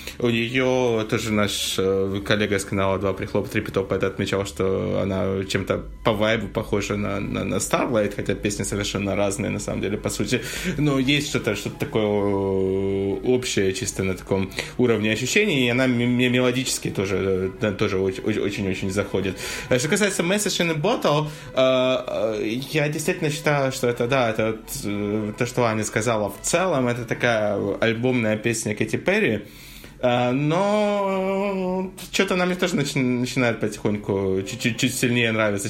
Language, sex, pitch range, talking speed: Russian, male, 100-130 Hz, 150 wpm